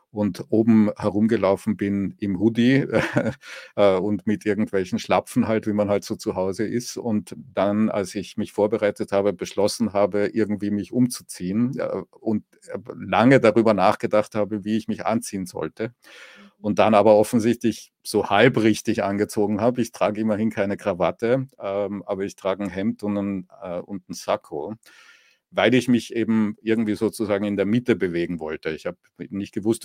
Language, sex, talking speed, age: English, male, 165 wpm, 50-69